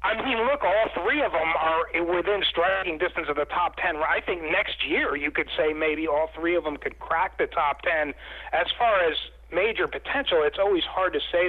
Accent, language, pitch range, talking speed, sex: American, English, 145-190 Hz, 220 wpm, male